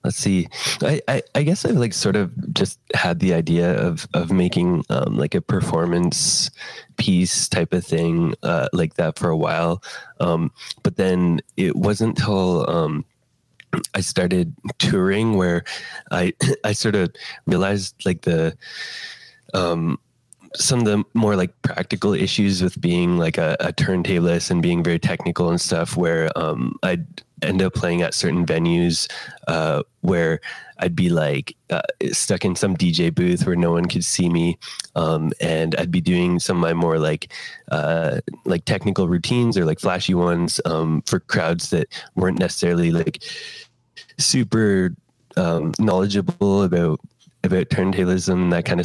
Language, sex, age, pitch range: English, male, 20-39, 85-95 Hz